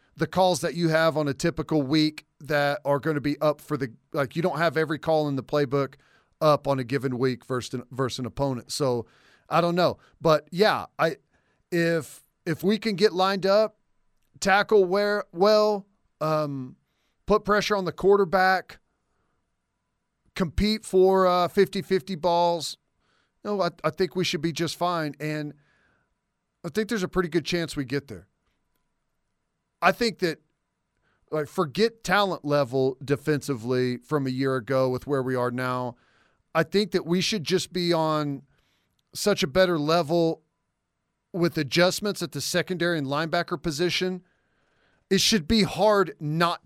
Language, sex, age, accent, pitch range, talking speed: English, male, 40-59, American, 140-185 Hz, 165 wpm